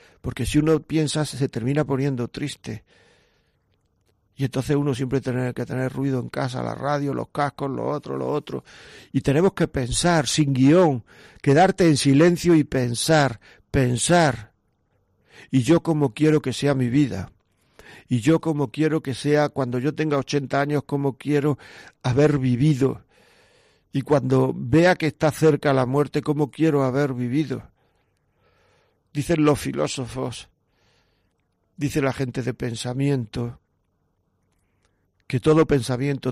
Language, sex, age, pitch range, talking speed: Spanish, male, 50-69, 120-145 Hz, 140 wpm